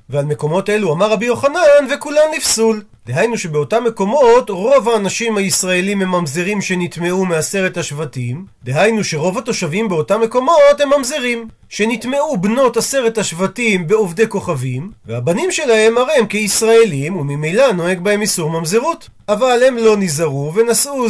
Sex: male